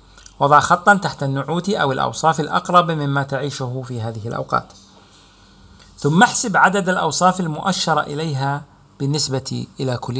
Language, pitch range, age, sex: Arabic, 95-165 Hz, 40-59, male